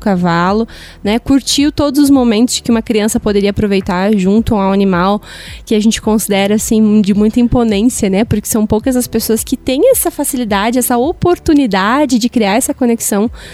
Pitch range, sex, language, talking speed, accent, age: 205-245 Hz, female, Portuguese, 175 wpm, Brazilian, 20-39